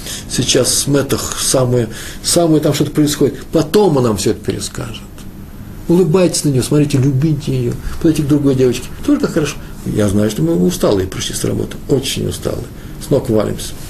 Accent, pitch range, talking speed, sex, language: native, 100-125 Hz, 175 wpm, male, Russian